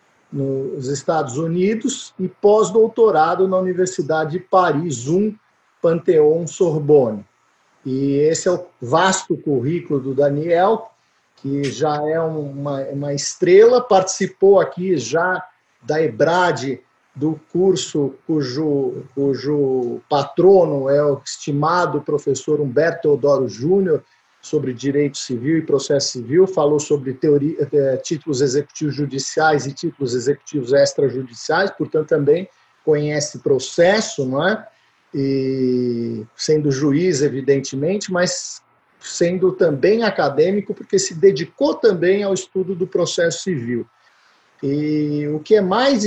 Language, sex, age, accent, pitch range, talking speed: Portuguese, male, 50-69, Brazilian, 140-185 Hz, 115 wpm